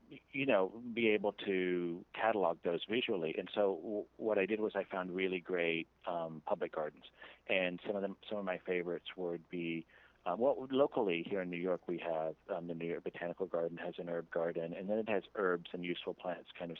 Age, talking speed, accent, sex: 40-59, 220 wpm, American, male